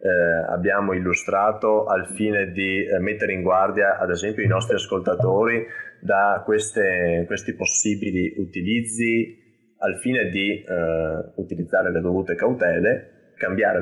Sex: male